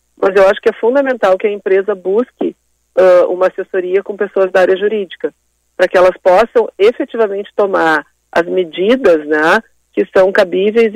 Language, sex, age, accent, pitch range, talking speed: Portuguese, female, 40-59, Brazilian, 175-210 Hz, 165 wpm